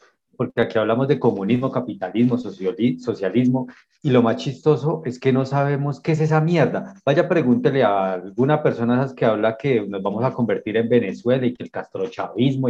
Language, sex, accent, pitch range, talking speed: Spanish, male, Colombian, 115-150 Hz, 180 wpm